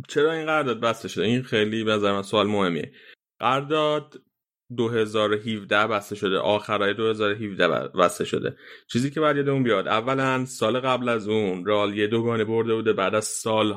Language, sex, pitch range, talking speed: Persian, male, 105-130 Hz, 160 wpm